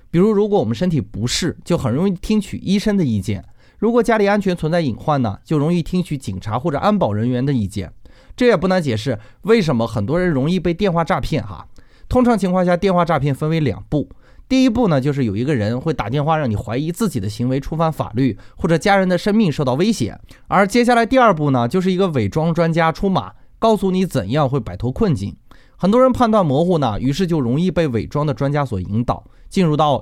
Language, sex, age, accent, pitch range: Chinese, male, 20-39, native, 125-195 Hz